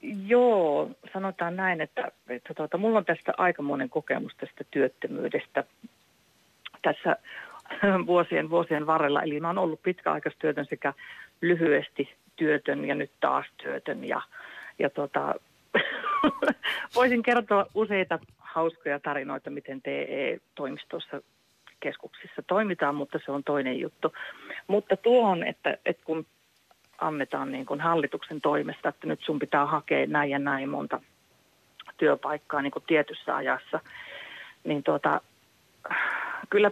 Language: Finnish